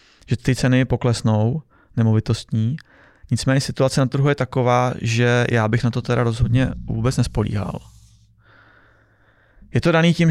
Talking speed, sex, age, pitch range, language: 140 wpm, male, 20-39, 110-125 Hz, Czech